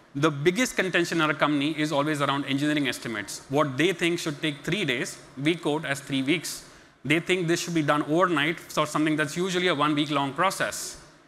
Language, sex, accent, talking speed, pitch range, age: English, male, Indian, 195 wpm, 135-160 Hz, 30-49